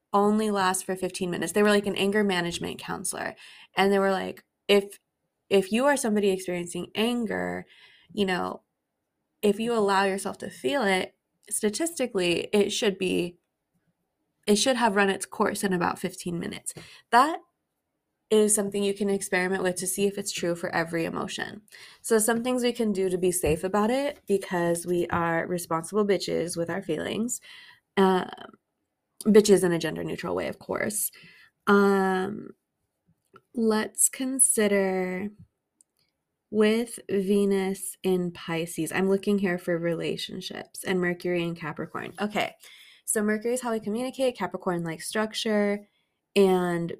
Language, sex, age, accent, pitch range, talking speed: English, female, 20-39, American, 180-215 Hz, 145 wpm